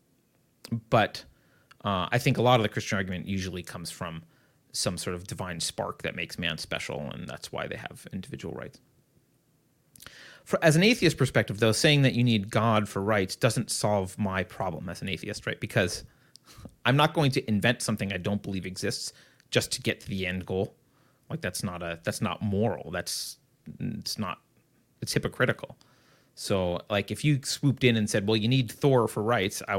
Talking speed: 190 wpm